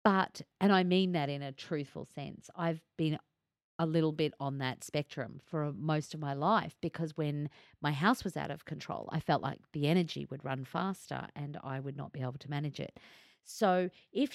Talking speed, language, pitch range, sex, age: 205 wpm, English, 145-195 Hz, female, 40-59